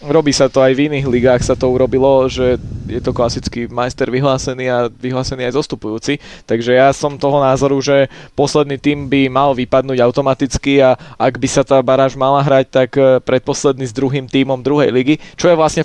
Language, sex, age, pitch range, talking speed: Slovak, male, 20-39, 125-140 Hz, 190 wpm